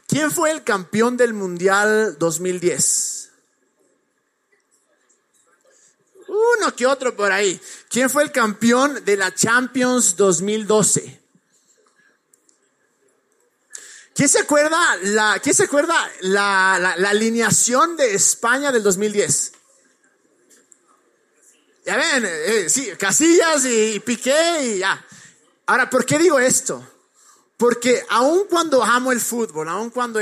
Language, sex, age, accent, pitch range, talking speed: Spanish, male, 30-49, Mexican, 200-270 Hz, 115 wpm